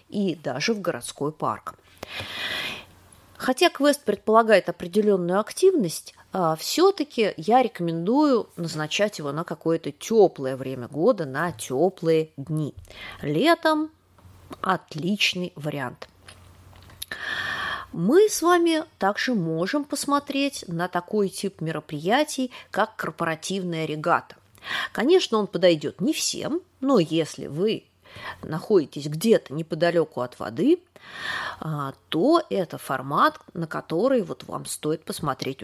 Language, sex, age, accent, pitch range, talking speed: Russian, female, 30-49, native, 155-235 Hz, 100 wpm